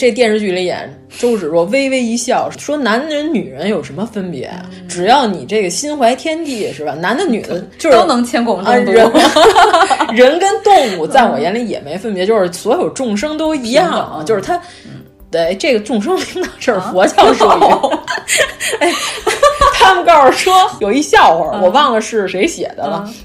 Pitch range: 220-295 Hz